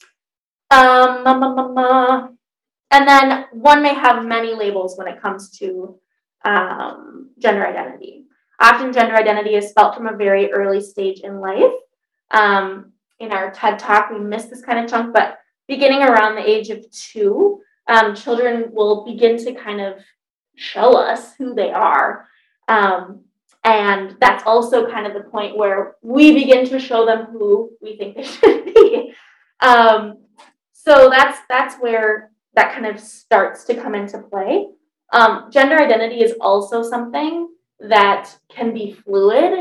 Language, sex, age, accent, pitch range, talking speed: English, female, 20-39, American, 210-260 Hz, 160 wpm